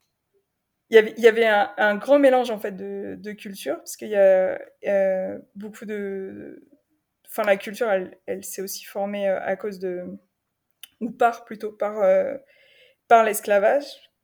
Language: French